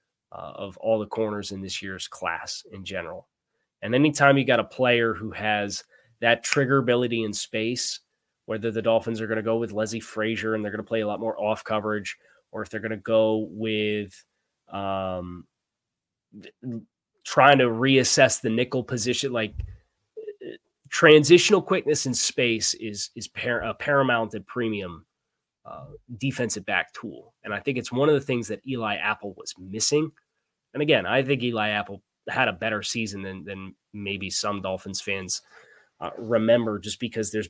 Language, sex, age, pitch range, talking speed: English, male, 20-39, 105-135 Hz, 175 wpm